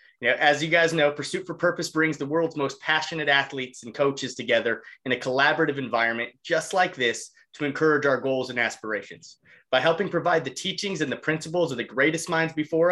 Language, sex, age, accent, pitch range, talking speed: English, male, 30-49, American, 125-165 Hz, 195 wpm